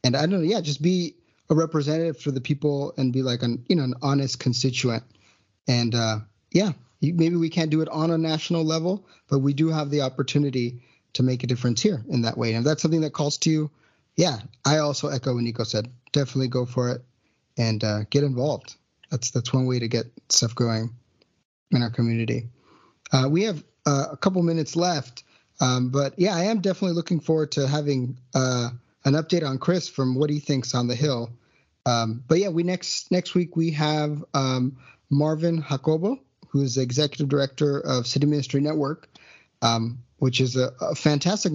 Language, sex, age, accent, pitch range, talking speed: English, male, 30-49, American, 125-155 Hz, 200 wpm